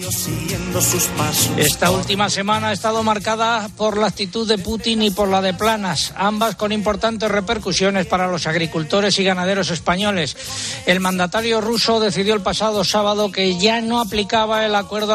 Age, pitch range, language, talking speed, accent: 60-79, 175-210 Hz, Spanish, 155 wpm, Spanish